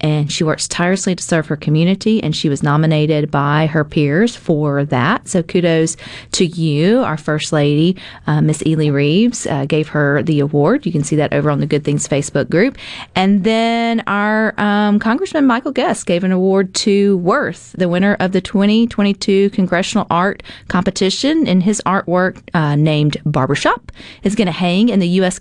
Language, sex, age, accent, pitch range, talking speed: English, female, 40-59, American, 155-200 Hz, 180 wpm